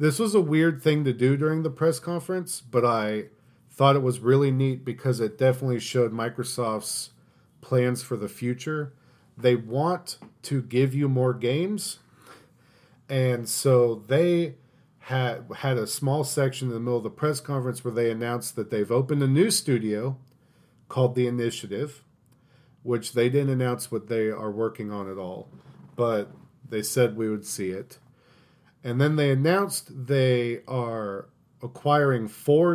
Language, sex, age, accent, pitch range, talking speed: English, male, 40-59, American, 115-140 Hz, 160 wpm